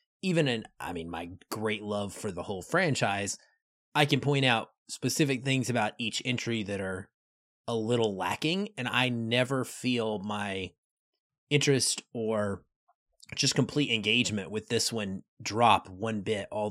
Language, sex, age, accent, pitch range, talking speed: English, male, 30-49, American, 105-140 Hz, 150 wpm